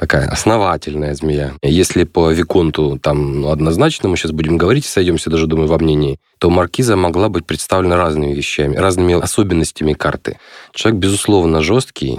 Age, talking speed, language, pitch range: 20-39, 160 wpm, Russian, 80-95 Hz